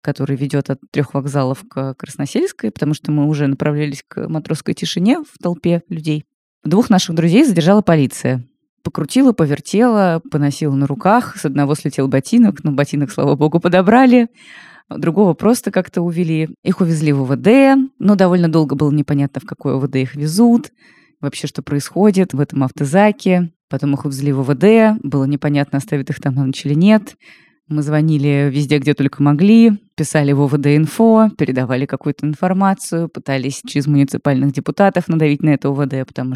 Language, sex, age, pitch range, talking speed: Russian, female, 20-39, 140-185 Hz, 160 wpm